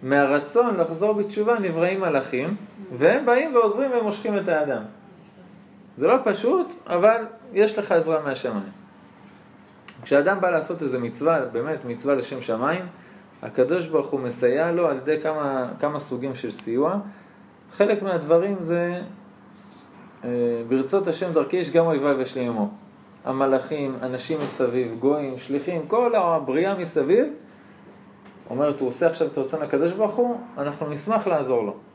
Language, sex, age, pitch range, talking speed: Hebrew, male, 20-39, 140-205 Hz, 135 wpm